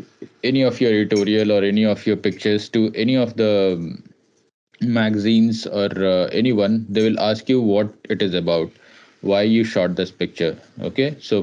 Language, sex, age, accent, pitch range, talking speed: English, male, 20-39, Indian, 95-110 Hz, 170 wpm